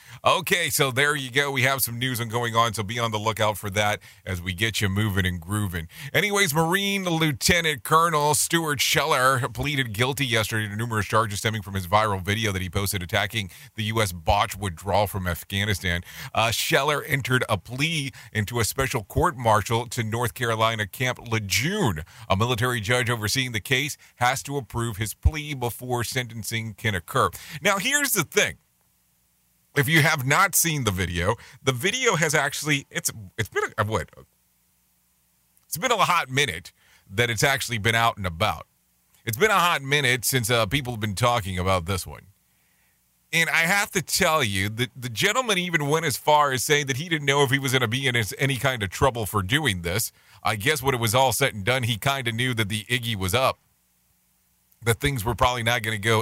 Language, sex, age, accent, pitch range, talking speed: English, male, 30-49, American, 105-135 Hz, 200 wpm